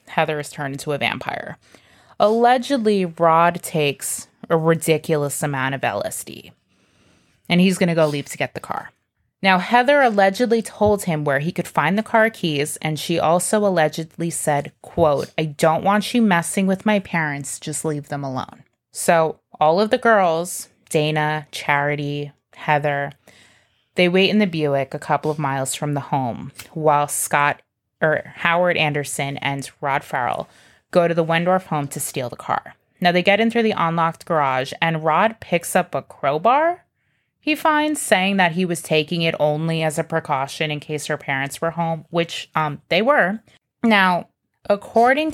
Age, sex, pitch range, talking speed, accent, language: 20-39, female, 145-185 Hz, 170 wpm, American, English